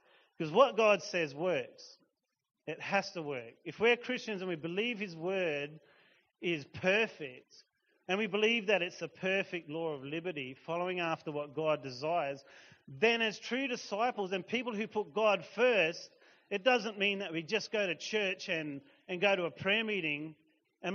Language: English